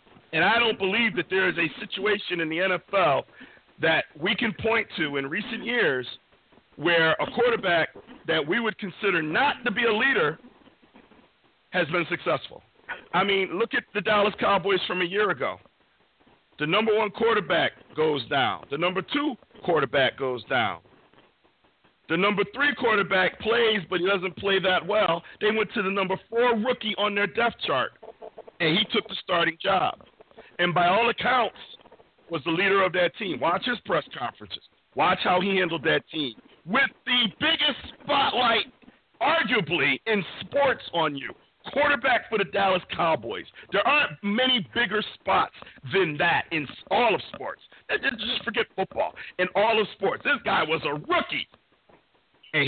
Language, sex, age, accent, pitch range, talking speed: English, male, 50-69, American, 180-230 Hz, 165 wpm